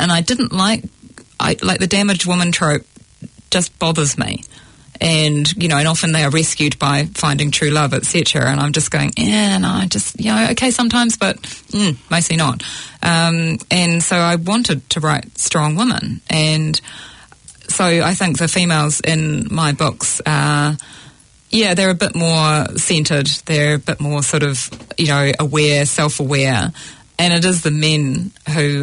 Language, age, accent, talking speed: English, 30-49, Australian, 175 wpm